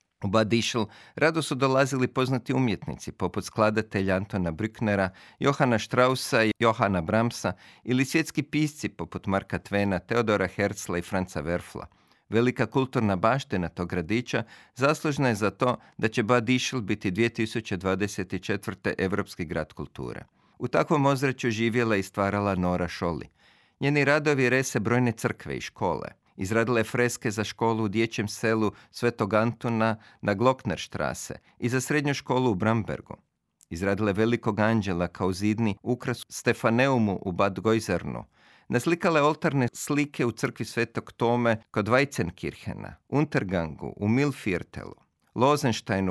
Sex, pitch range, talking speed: male, 100-130 Hz, 130 wpm